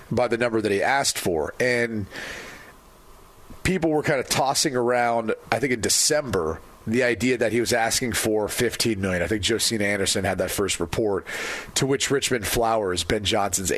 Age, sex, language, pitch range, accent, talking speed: 40-59, male, English, 105-130 Hz, American, 180 wpm